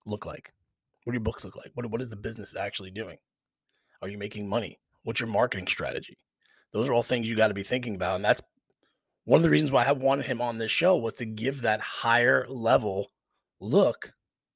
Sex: male